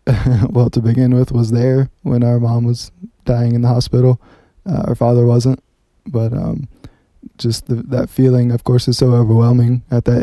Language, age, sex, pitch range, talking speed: English, 20-39, male, 120-125 Hz, 175 wpm